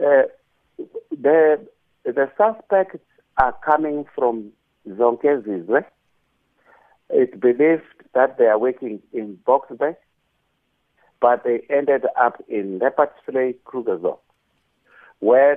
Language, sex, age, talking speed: English, male, 60-79, 110 wpm